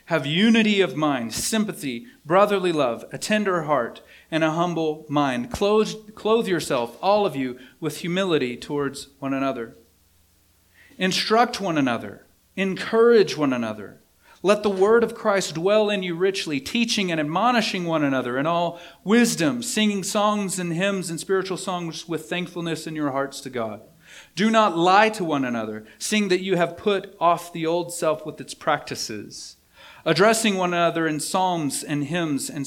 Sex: male